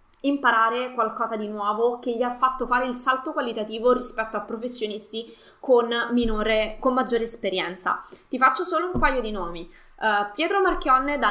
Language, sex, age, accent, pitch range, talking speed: Italian, female, 20-39, native, 220-275 Hz, 165 wpm